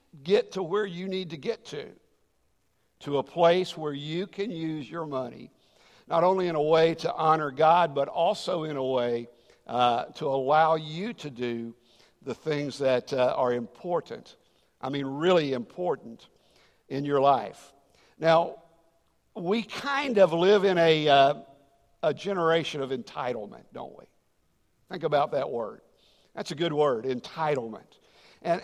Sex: male